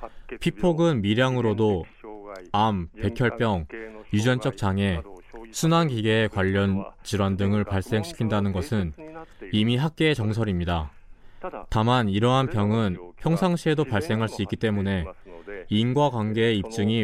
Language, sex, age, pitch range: Korean, male, 20-39, 100-130 Hz